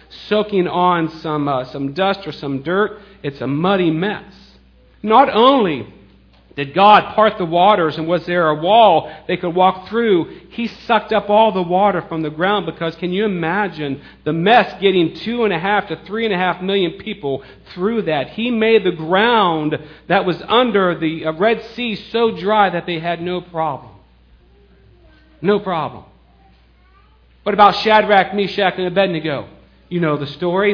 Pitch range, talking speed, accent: 155-210 Hz, 170 wpm, American